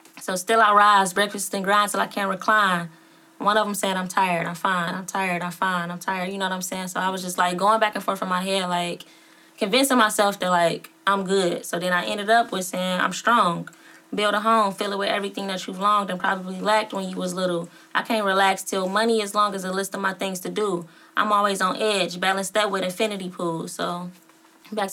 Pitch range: 180-215 Hz